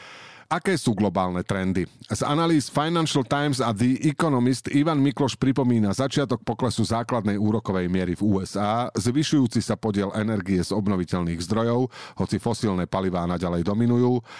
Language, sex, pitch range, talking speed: Slovak, male, 100-140 Hz, 140 wpm